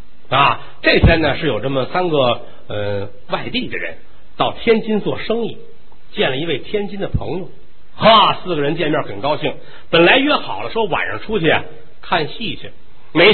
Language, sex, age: Chinese, male, 50-69